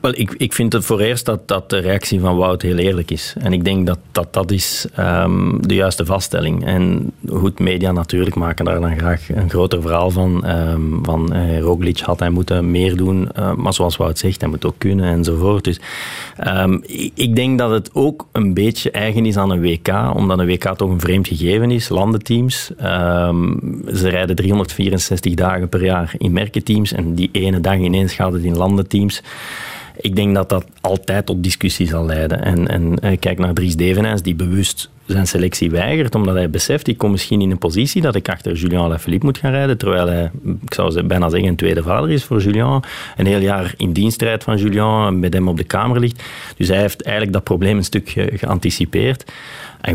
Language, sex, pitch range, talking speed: Dutch, male, 90-105 Hz, 200 wpm